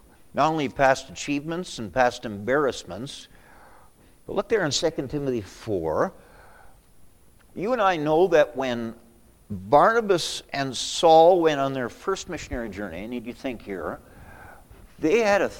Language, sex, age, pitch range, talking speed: English, male, 50-69, 115-145 Hz, 140 wpm